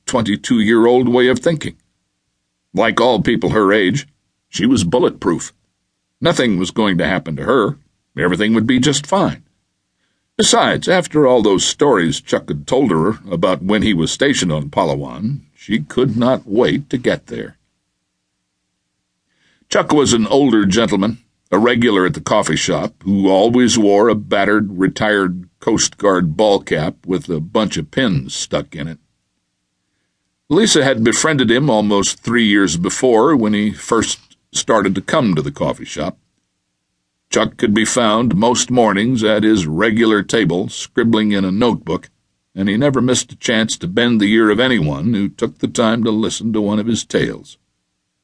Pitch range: 90-120 Hz